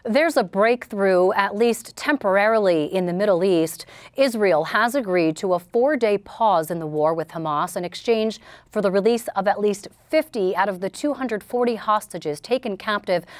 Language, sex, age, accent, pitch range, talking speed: English, female, 30-49, American, 185-230 Hz, 170 wpm